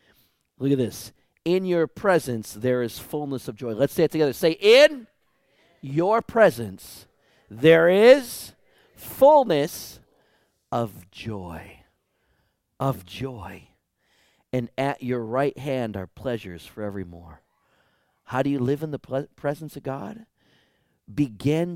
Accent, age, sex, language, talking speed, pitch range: American, 50-69, male, English, 125 wpm, 100-145 Hz